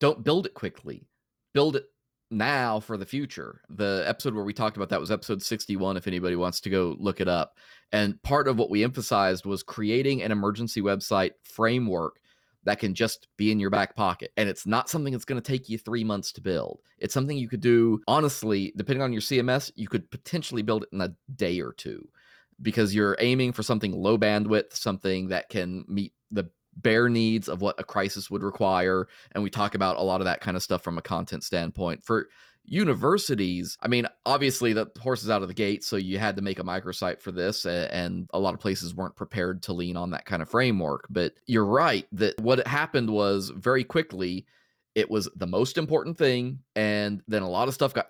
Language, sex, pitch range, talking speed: English, male, 100-125 Hz, 215 wpm